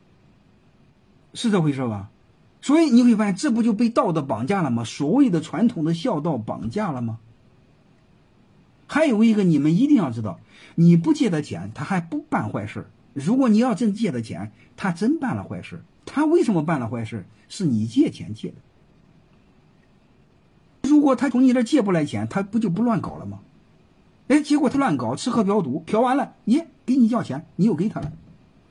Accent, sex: native, male